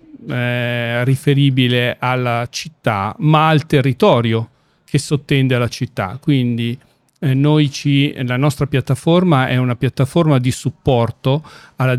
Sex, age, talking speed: male, 40-59, 120 wpm